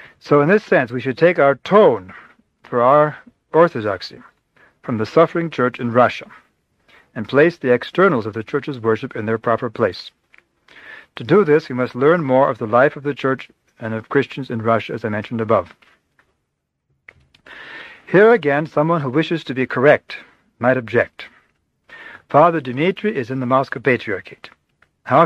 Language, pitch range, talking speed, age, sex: English, 120-150 Hz, 165 wpm, 60-79, male